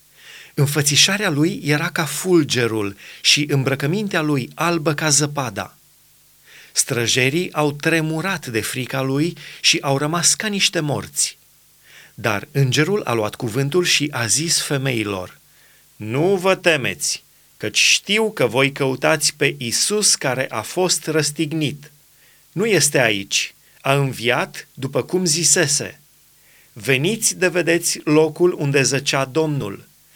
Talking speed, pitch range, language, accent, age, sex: 120 wpm, 135-165 Hz, Romanian, native, 30-49, male